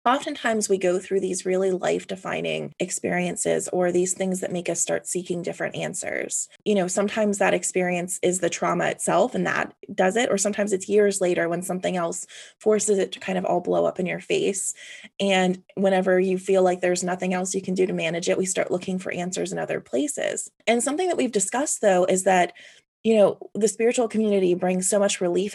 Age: 20-39